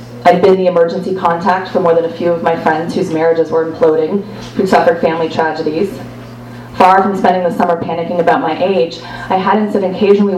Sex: female